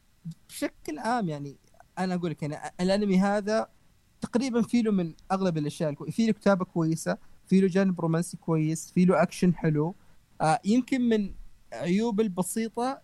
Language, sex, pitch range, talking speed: Arabic, male, 155-195 Hz, 145 wpm